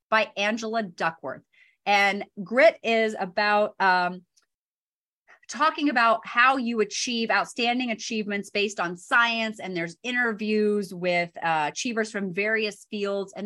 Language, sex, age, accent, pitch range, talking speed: English, female, 30-49, American, 195-250 Hz, 125 wpm